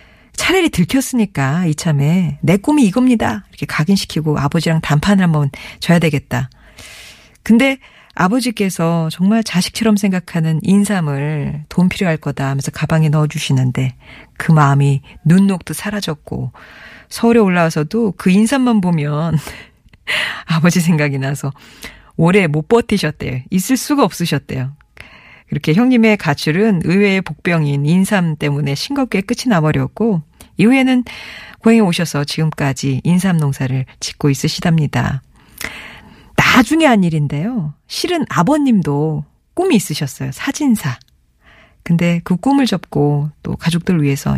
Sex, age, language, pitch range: female, 40-59, Korean, 145-205 Hz